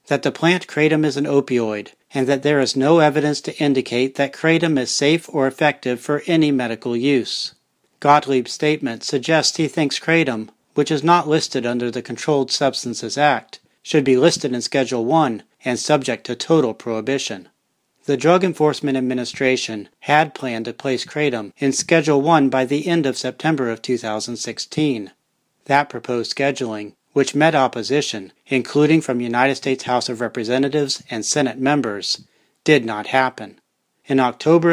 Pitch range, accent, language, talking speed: 120-150 Hz, American, English, 155 wpm